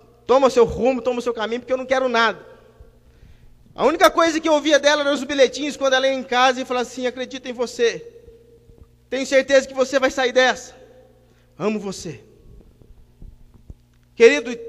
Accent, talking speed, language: Brazilian, 180 wpm, Portuguese